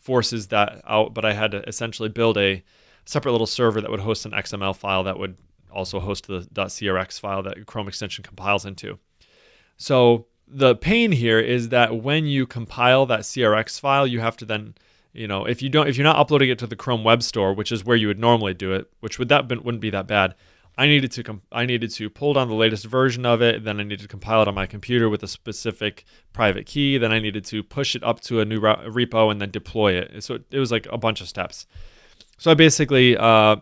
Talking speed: 245 wpm